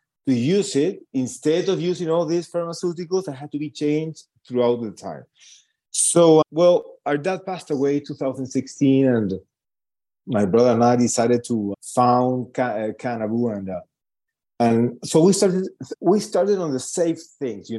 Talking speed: 155 wpm